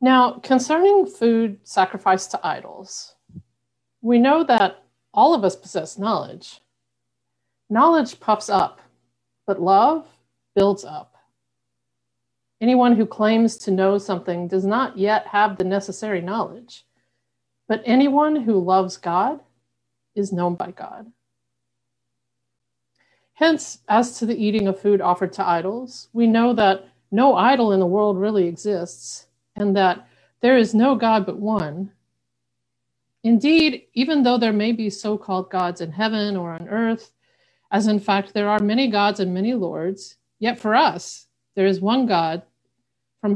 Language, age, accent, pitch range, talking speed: English, 50-69, American, 135-220 Hz, 140 wpm